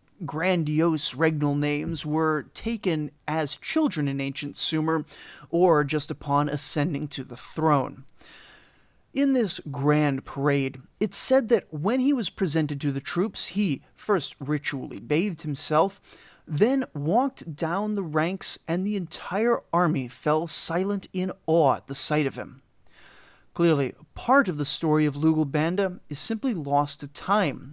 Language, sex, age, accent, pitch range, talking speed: English, male, 30-49, American, 150-195 Hz, 145 wpm